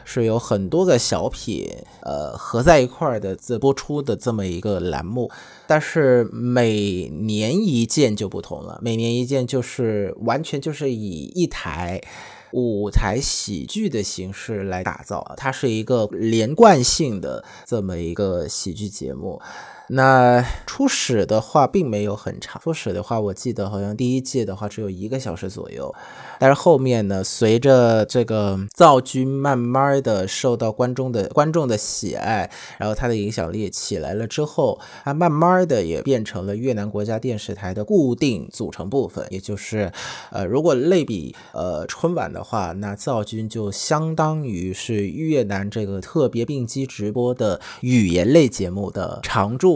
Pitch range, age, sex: 100-130 Hz, 20-39, male